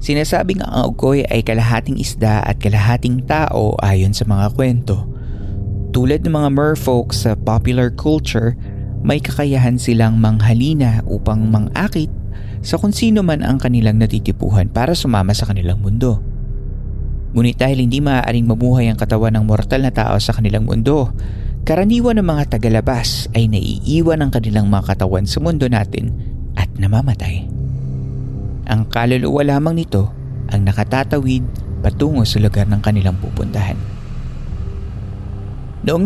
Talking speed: 130 wpm